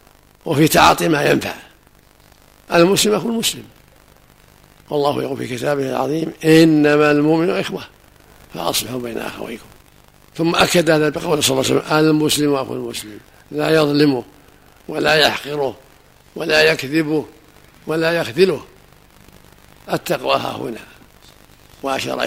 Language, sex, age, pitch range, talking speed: Arabic, male, 60-79, 140-160 Hz, 110 wpm